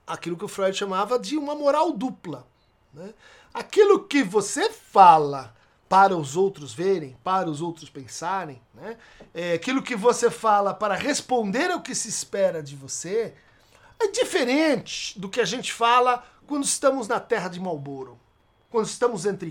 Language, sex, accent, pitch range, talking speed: Portuguese, male, Brazilian, 170-265 Hz, 160 wpm